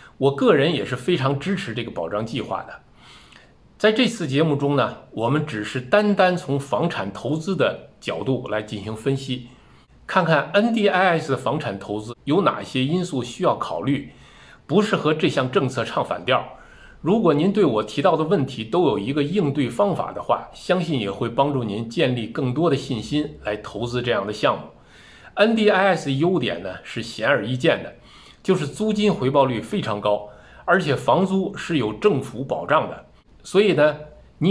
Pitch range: 125-180 Hz